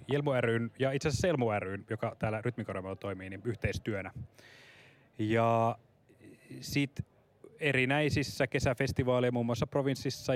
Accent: native